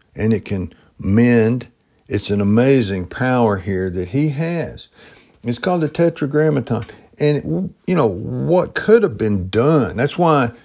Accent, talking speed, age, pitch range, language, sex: American, 150 wpm, 60-79, 100-140 Hz, English, male